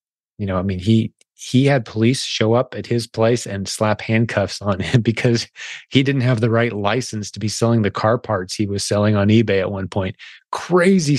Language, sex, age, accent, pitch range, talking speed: English, male, 30-49, American, 105-125 Hz, 215 wpm